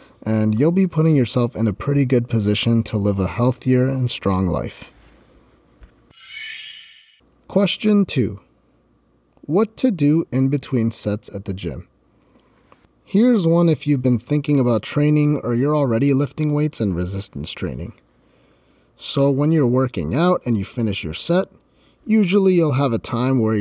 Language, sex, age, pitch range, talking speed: English, male, 30-49, 105-150 Hz, 155 wpm